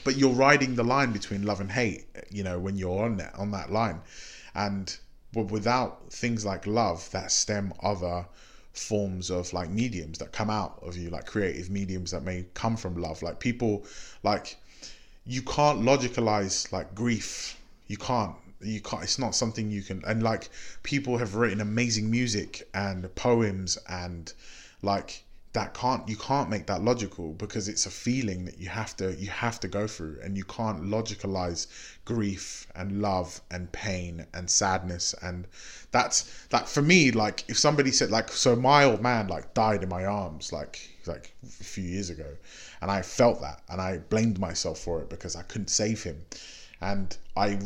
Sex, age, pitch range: male, 20-39, 95-115 Hz